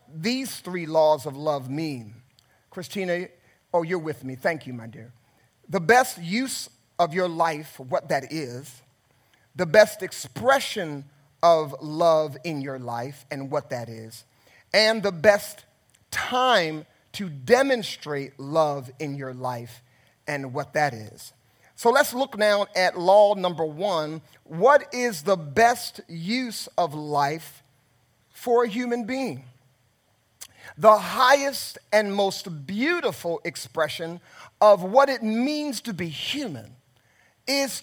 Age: 40-59